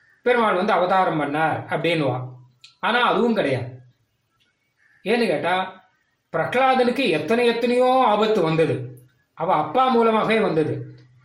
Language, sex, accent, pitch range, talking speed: Tamil, male, native, 155-235 Hz, 90 wpm